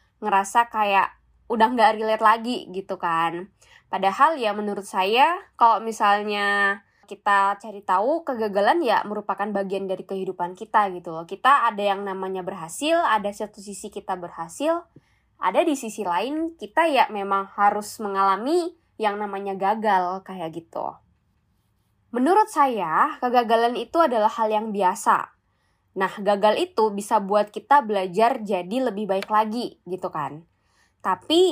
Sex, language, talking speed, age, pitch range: female, Indonesian, 135 wpm, 10-29, 195-245 Hz